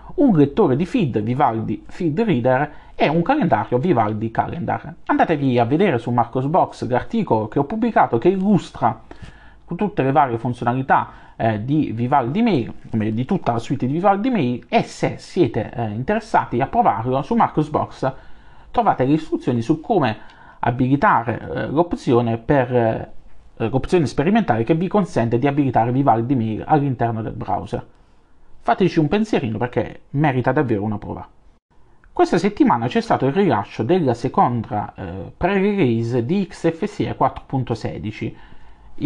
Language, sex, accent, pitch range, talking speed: Italian, male, native, 115-165 Hz, 145 wpm